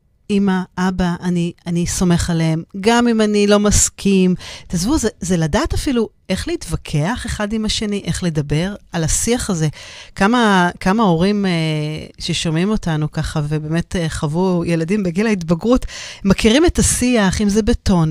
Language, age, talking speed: Hebrew, 40-59, 145 wpm